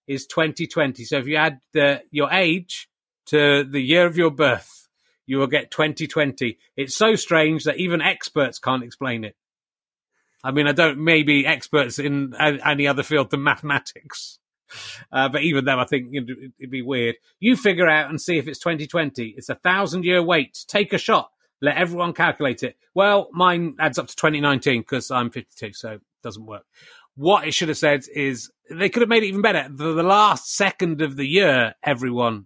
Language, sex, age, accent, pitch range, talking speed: English, male, 30-49, British, 125-160 Hz, 195 wpm